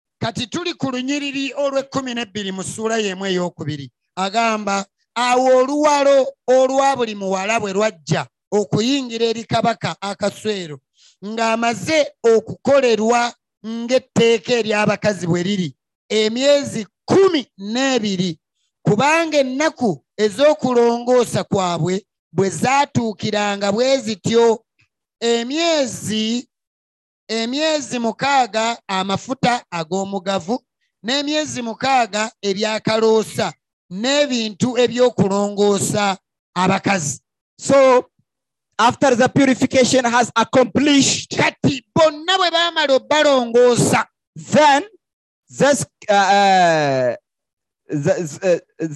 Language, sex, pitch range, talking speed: English, male, 200-270 Hz, 75 wpm